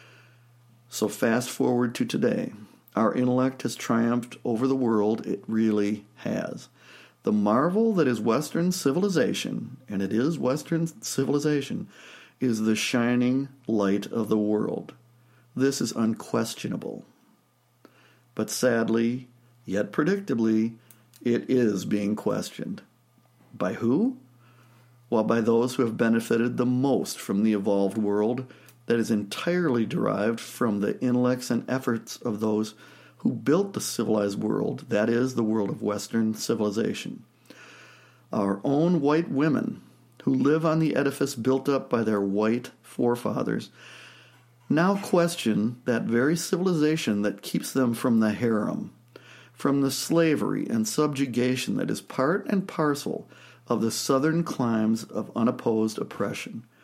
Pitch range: 110-135 Hz